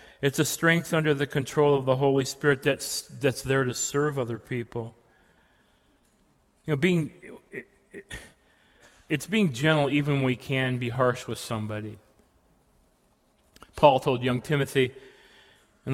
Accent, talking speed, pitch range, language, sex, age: American, 145 wpm, 120-150 Hz, English, male, 40-59